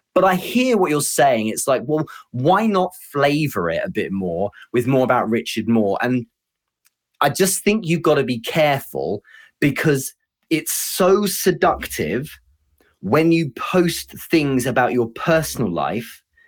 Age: 30-49